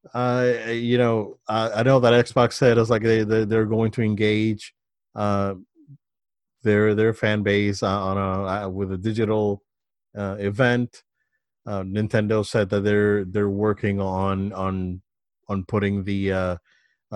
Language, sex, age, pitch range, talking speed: English, male, 30-49, 95-110 Hz, 155 wpm